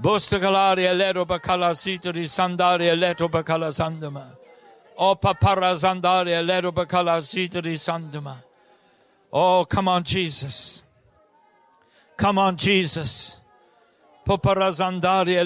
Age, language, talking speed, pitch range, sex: 60-79, English, 95 wpm, 170-205 Hz, male